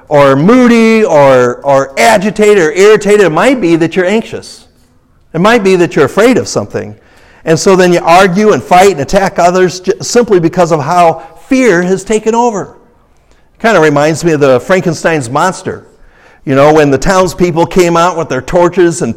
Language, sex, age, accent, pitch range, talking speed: English, male, 60-79, American, 150-195 Hz, 185 wpm